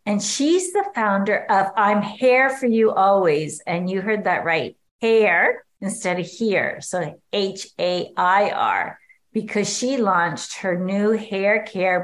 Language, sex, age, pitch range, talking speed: English, female, 50-69, 185-225 Hz, 155 wpm